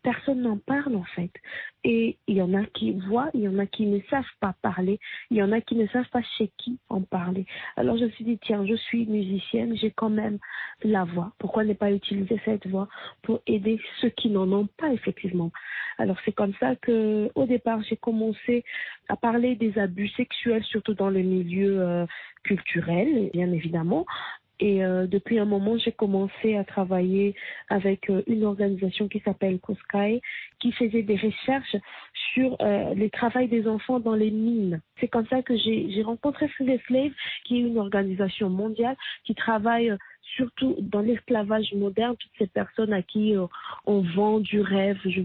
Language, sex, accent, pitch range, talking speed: French, female, French, 200-235 Hz, 190 wpm